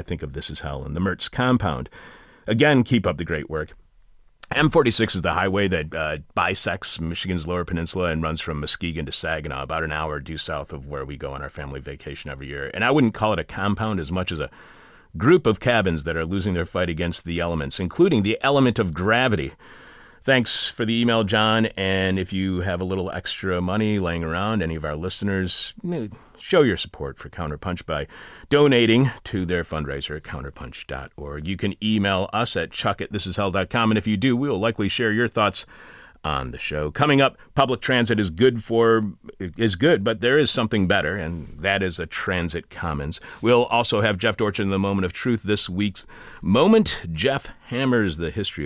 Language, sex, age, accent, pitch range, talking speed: English, male, 40-59, American, 80-110 Hz, 200 wpm